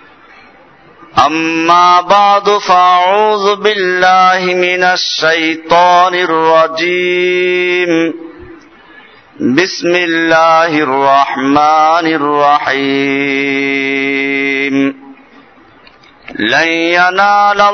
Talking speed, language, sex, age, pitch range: 45 wpm, Bengali, male, 50-69, 150-200 Hz